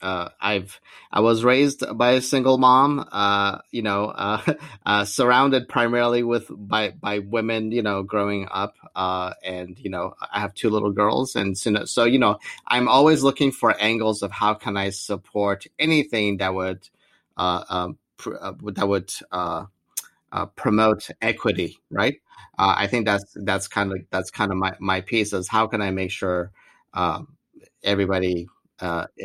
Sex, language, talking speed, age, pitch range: male, English, 175 wpm, 30-49, 95-115 Hz